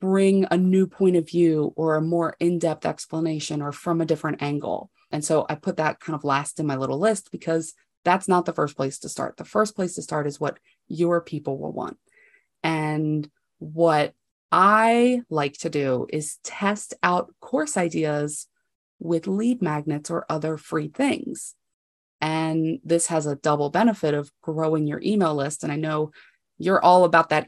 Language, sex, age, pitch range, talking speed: English, female, 30-49, 155-195 Hz, 180 wpm